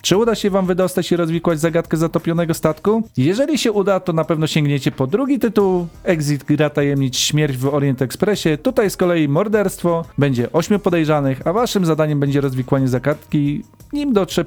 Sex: male